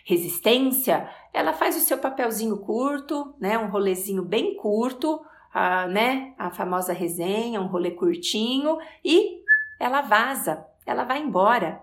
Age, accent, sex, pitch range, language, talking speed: 40-59, Brazilian, female, 190-245 Hz, Portuguese, 125 wpm